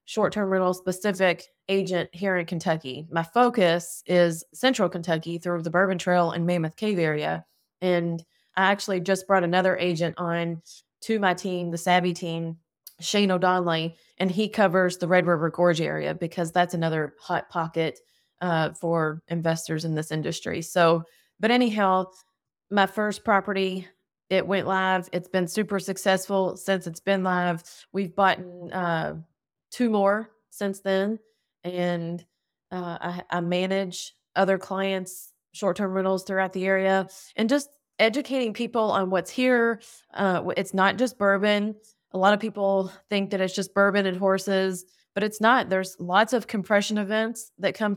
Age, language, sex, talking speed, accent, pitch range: 20-39, English, female, 155 wpm, American, 175-200 Hz